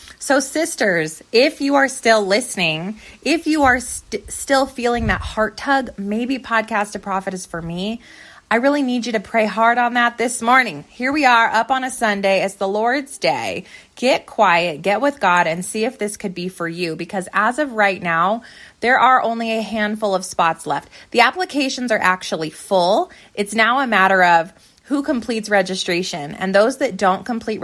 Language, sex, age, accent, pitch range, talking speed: English, female, 20-39, American, 190-250 Hz, 195 wpm